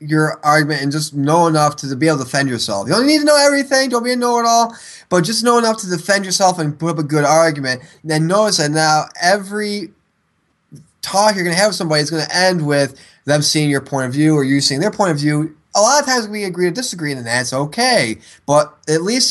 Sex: male